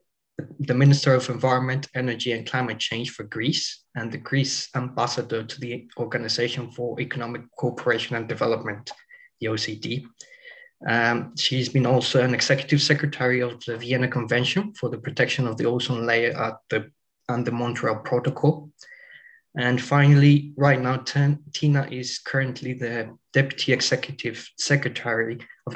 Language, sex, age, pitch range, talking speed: English, male, 20-39, 115-140 Hz, 140 wpm